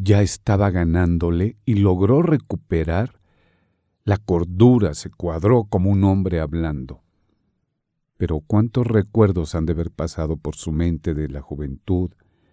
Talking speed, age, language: 130 wpm, 50-69, Spanish